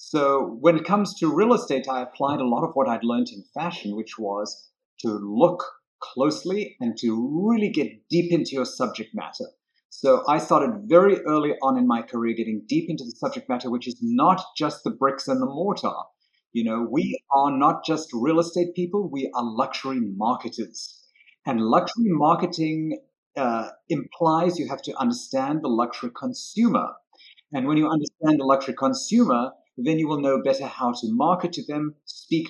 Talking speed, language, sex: 180 wpm, English, male